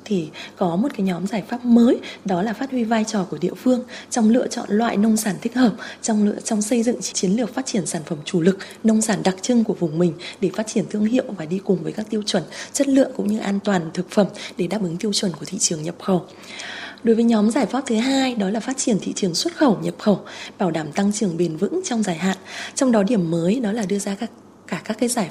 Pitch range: 185-230 Hz